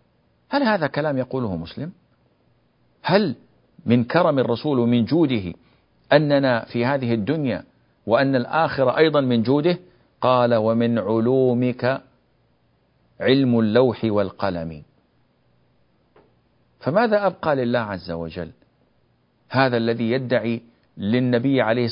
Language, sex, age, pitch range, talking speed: Arabic, male, 50-69, 115-140 Hz, 100 wpm